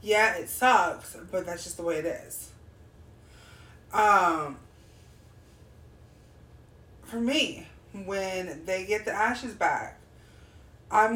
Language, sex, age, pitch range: English, female, 30-49, 170-230 Hz